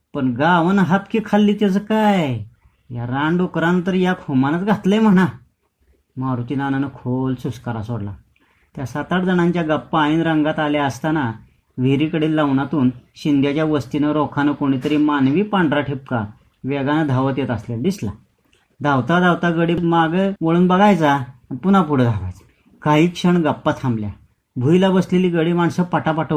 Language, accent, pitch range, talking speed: Marathi, native, 130-160 Hz, 135 wpm